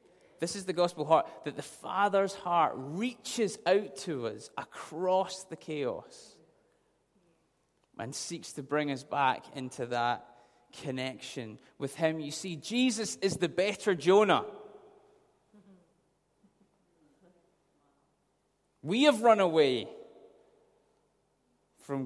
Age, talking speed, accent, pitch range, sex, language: 20-39, 105 wpm, British, 140-195 Hz, male, English